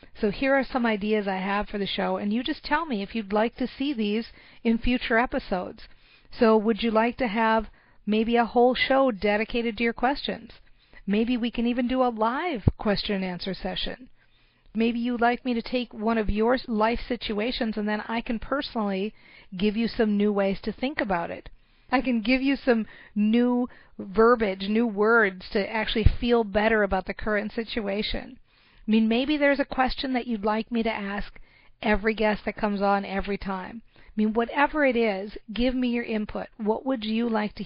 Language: English